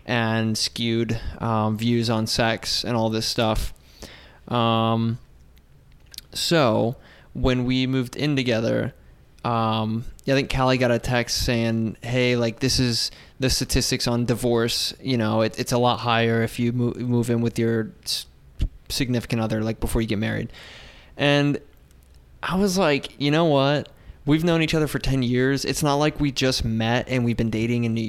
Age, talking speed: 20-39, 175 wpm